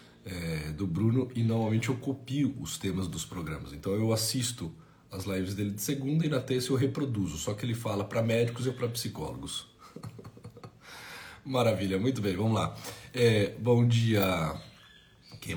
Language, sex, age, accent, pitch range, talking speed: Portuguese, male, 50-69, Brazilian, 90-115 Hz, 160 wpm